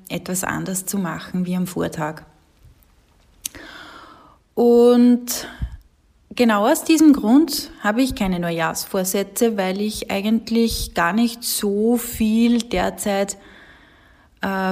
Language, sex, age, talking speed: German, female, 20-39, 100 wpm